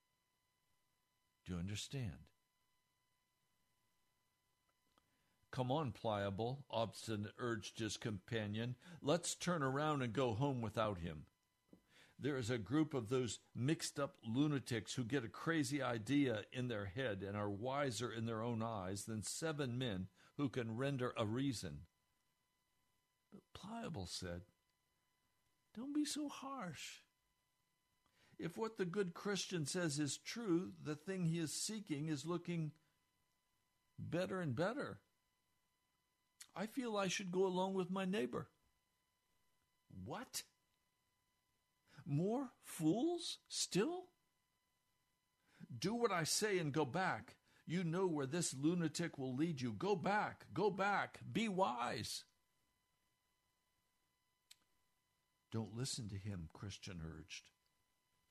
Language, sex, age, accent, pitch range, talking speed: English, male, 60-79, American, 115-175 Hz, 120 wpm